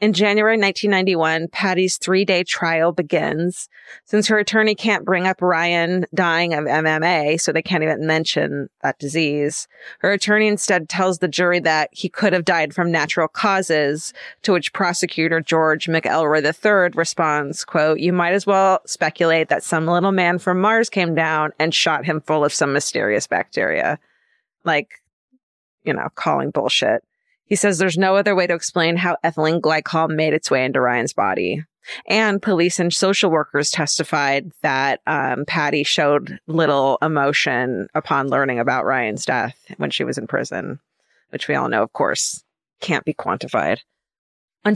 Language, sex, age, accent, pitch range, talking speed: English, female, 30-49, American, 155-190 Hz, 165 wpm